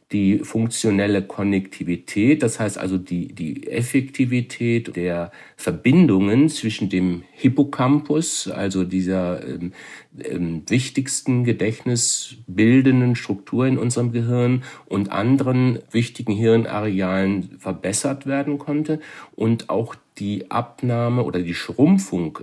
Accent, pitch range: German, 95-120 Hz